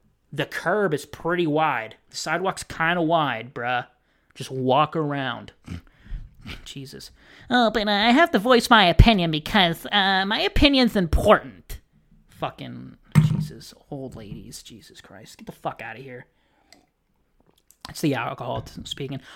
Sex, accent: male, American